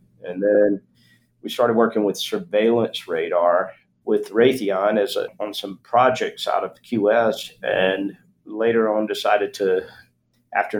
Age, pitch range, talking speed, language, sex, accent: 50-69, 100-130 Hz, 135 wpm, English, male, American